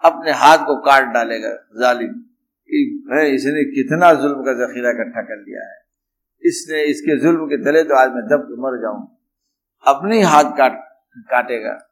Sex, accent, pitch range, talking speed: male, Indian, 140-230 Hz, 165 wpm